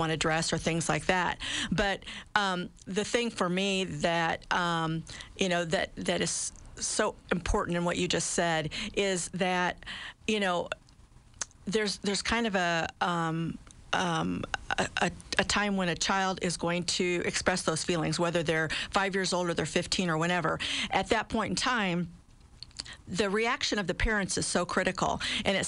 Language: English